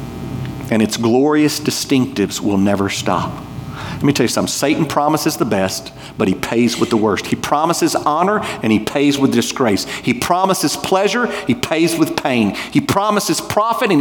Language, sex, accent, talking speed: English, male, American, 175 wpm